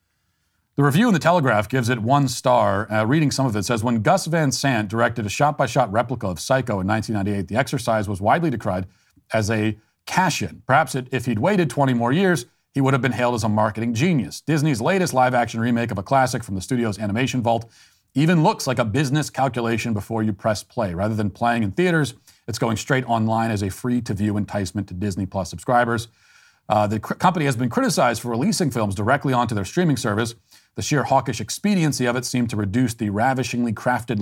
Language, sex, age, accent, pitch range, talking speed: English, male, 40-59, American, 105-135 Hz, 205 wpm